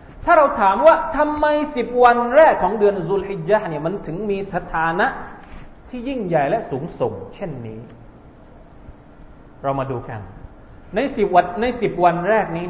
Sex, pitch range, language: male, 155-230 Hz, Thai